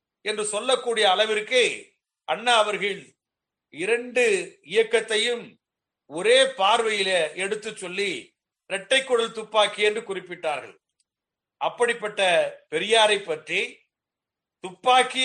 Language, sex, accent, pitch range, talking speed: Tamil, male, native, 190-240 Hz, 70 wpm